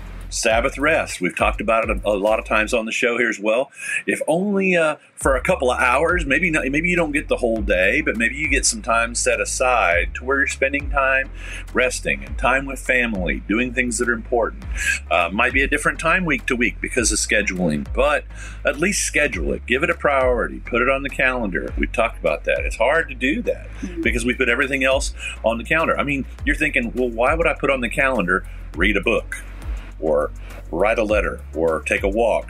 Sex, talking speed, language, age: male, 225 wpm, English, 40-59